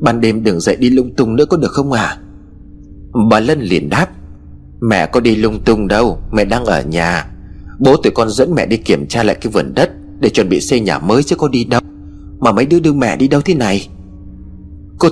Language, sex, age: Vietnamese, male, 30-49